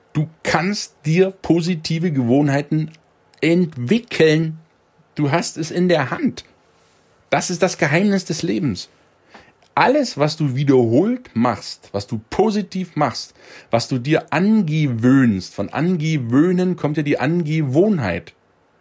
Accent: German